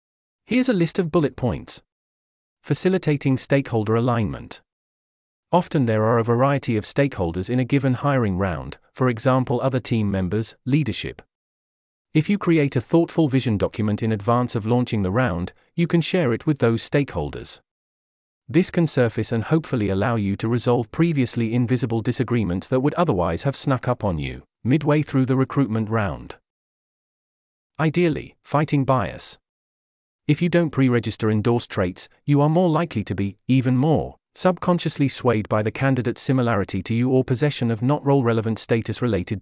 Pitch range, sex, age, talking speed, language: 105-145 Hz, male, 40-59, 155 wpm, English